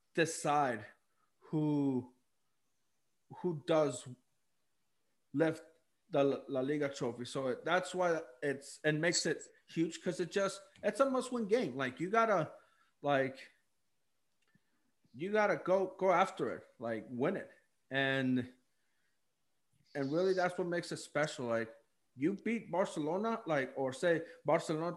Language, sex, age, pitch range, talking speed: English, male, 30-49, 150-215 Hz, 130 wpm